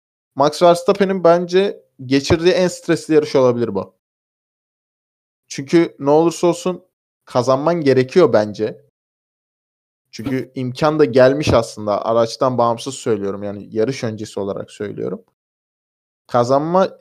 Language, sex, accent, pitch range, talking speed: Turkish, male, native, 115-175 Hz, 105 wpm